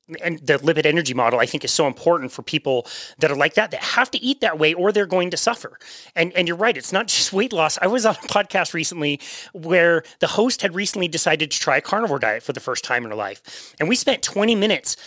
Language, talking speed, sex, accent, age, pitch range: English, 260 wpm, male, American, 30-49, 155-215 Hz